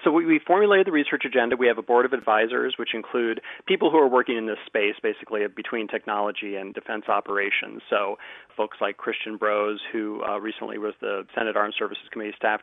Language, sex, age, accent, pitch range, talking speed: English, male, 40-59, American, 105-120 Hz, 200 wpm